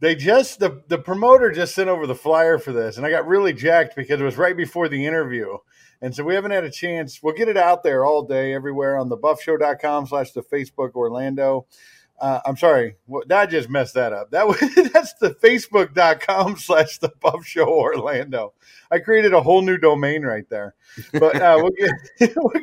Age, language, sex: 50-69, English, male